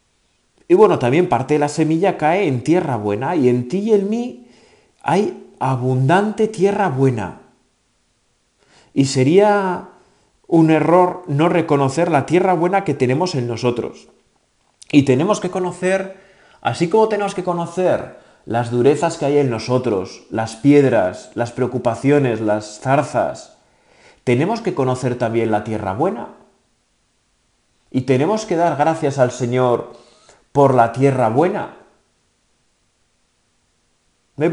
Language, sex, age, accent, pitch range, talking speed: Spanish, male, 30-49, Spanish, 125-180 Hz, 125 wpm